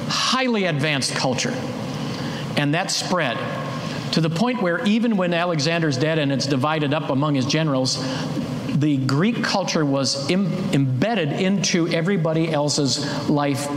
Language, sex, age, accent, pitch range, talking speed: English, male, 50-69, American, 135-170 Hz, 130 wpm